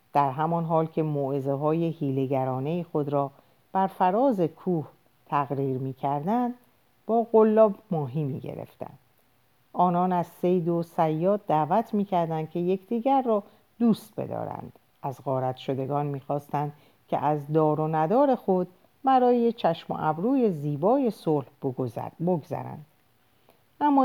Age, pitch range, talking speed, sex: 50-69, 140-195 Hz, 120 wpm, female